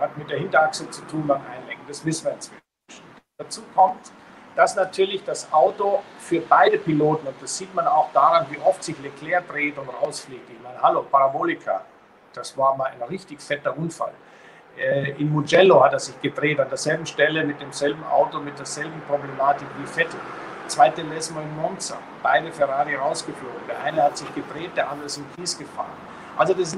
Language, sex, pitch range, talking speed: German, male, 145-185 Hz, 185 wpm